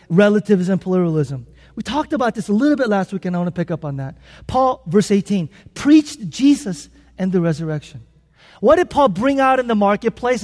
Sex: male